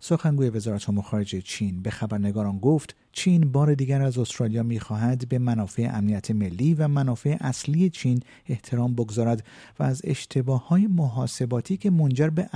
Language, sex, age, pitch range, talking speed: Persian, male, 50-69, 115-150 Hz, 145 wpm